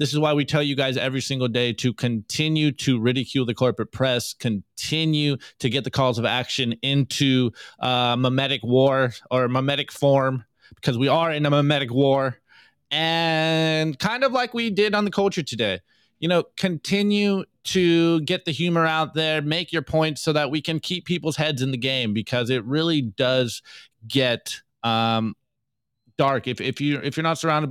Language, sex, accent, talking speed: English, male, American, 185 wpm